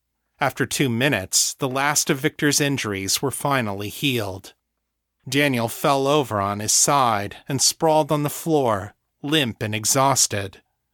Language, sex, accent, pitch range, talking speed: English, male, American, 105-145 Hz, 135 wpm